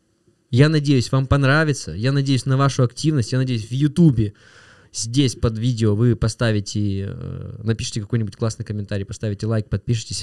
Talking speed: 145 wpm